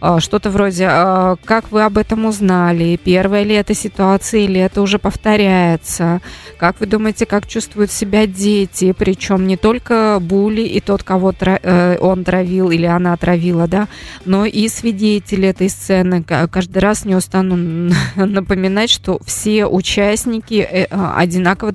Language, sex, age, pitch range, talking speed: Russian, female, 20-39, 180-215 Hz, 135 wpm